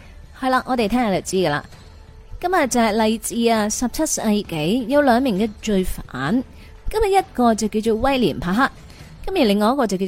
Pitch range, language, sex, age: 190-265 Hz, Chinese, female, 30-49